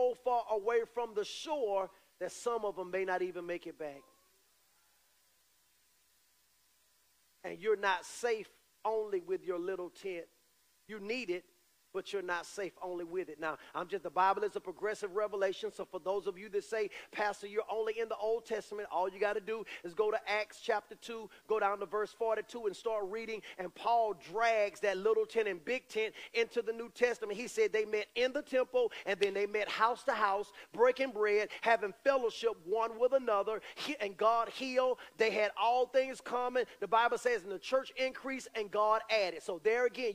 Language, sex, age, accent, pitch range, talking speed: English, male, 40-59, American, 210-260 Hz, 195 wpm